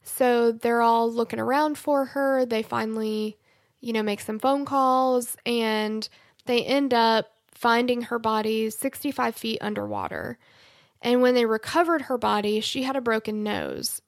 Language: English